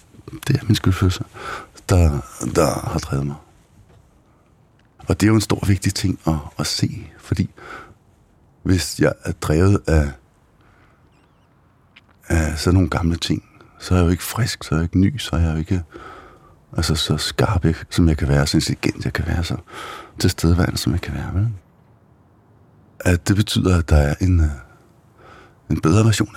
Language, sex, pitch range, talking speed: Danish, male, 80-100 Hz, 175 wpm